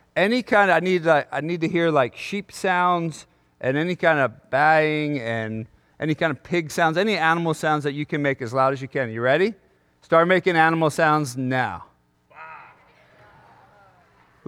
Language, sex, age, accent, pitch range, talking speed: English, male, 40-59, American, 155-250 Hz, 175 wpm